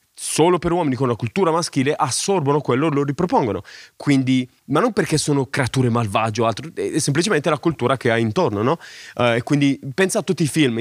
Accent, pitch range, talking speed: native, 120-150 Hz, 200 wpm